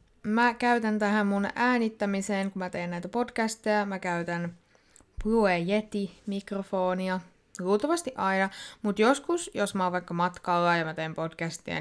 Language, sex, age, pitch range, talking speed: Finnish, female, 20-39, 175-230 Hz, 135 wpm